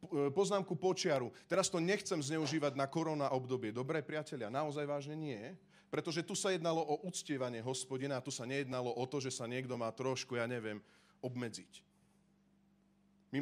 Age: 40-59